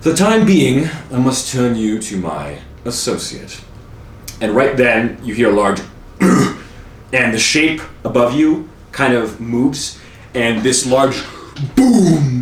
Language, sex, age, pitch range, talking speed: English, male, 30-49, 105-130 Hz, 145 wpm